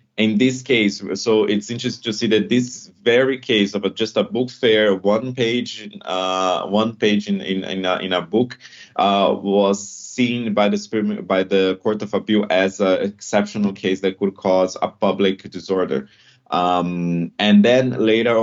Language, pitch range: English, 95-110 Hz